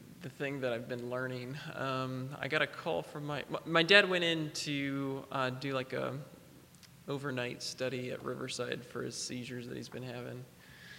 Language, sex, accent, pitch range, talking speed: English, male, American, 125-150 Hz, 180 wpm